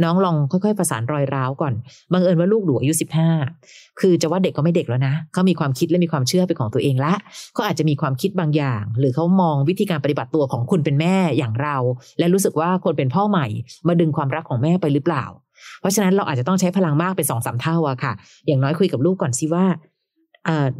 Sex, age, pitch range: female, 30-49, 145-180 Hz